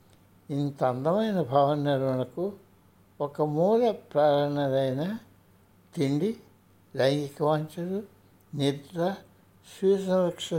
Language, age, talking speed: Telugu, 60-79, 75 wpm